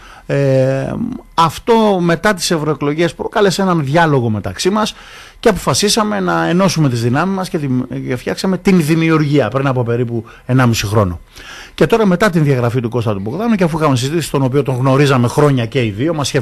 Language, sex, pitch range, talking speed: Greek, male, 120-170 Hz, 175 wpm